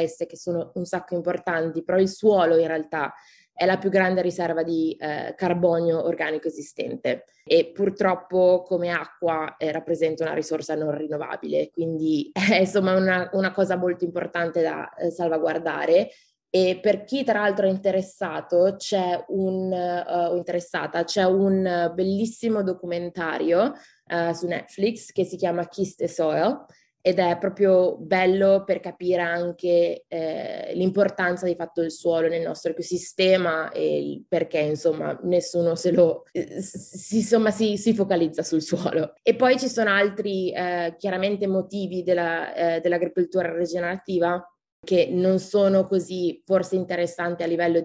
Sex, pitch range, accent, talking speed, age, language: female, 165-185 Hz, native, 145 wpm, 20-39, Italian